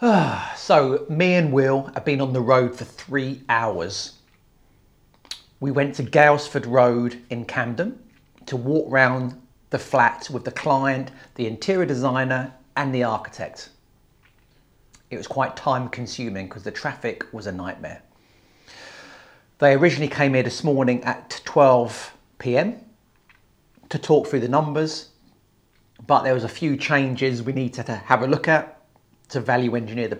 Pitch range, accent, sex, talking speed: 120-145 Hz, British, male, 145 wpm